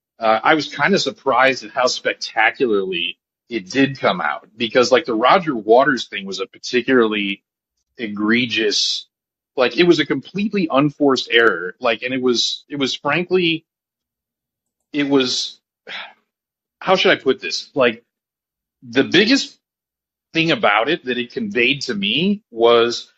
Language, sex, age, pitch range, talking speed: English, male, 30-49, 125-185 Hz, 145 wpm